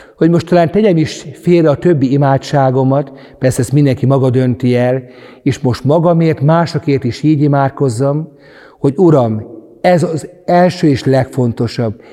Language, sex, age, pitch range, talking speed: Hungarian, male, 60-79, 125-155 Hz, 145 wpm